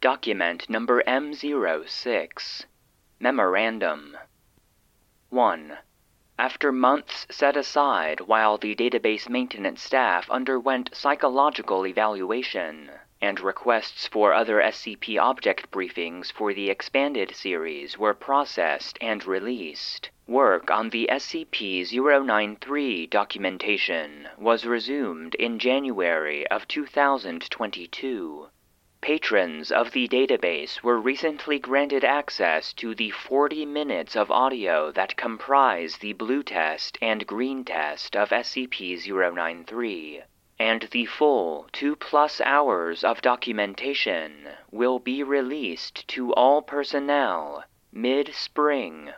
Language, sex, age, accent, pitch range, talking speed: English, male, 30-49, American, 110-140 Hz, 100 wpm